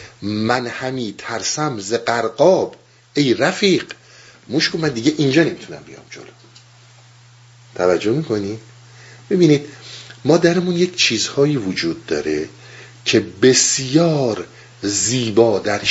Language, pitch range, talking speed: Persian, 115-150 Hz, 100 wpm